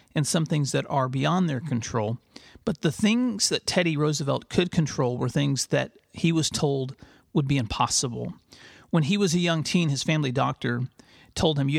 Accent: American